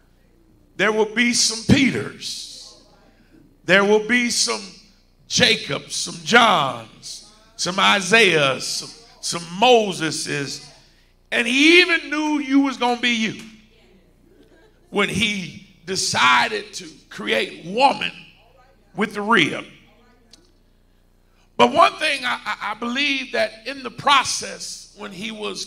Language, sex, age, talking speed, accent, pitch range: English, male, 50-69, 115 wpm, American, 195-260 Hz